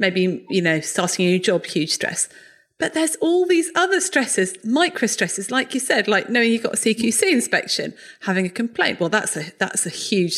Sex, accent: female, British